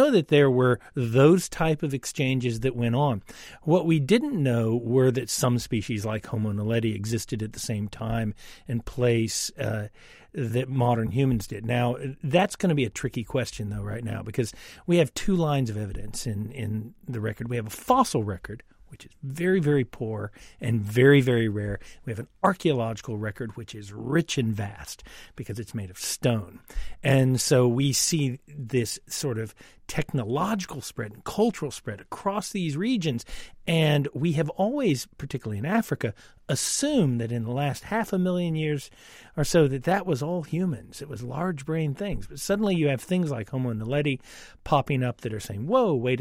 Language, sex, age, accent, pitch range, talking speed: English, male, 50-69, American, 115-155 Hz, 185 wpm